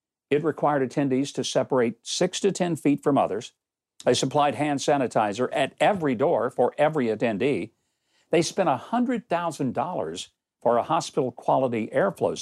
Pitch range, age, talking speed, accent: 135-185 Hz, 60-79, 135 wpm, American